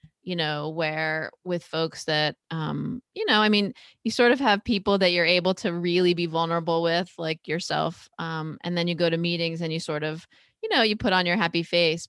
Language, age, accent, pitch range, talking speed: English, 20-39, American, 165-195 Hz, 225 wpm